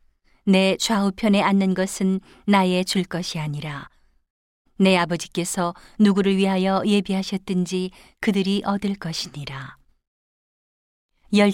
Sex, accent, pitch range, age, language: female, native, 160-200 Hz, 40-59, Korean